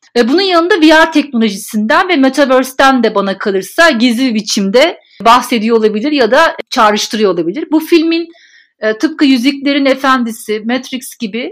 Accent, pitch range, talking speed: native, 235-295 Hz, 125 wpm